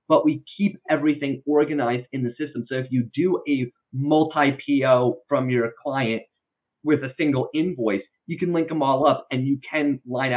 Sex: male